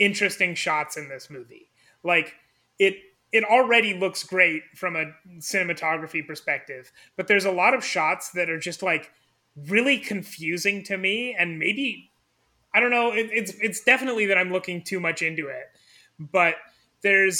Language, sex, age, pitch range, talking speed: English, male, 30-49, 160-200 Hz, 160 wpm